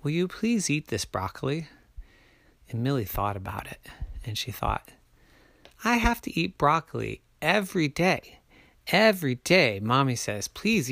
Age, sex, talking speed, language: 40-59, male, 145 wpm, English